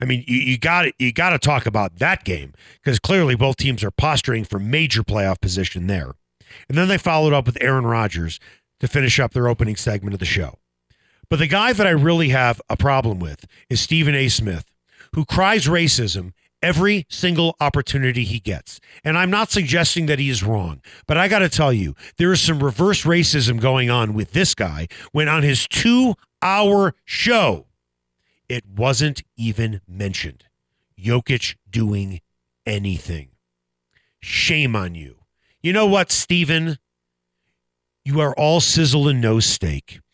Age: 40-59